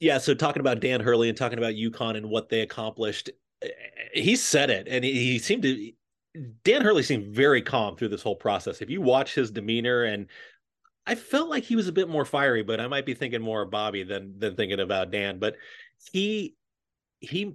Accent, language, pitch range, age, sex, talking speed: American, English, 110-140 Hz, 30-49, male, 210 wpm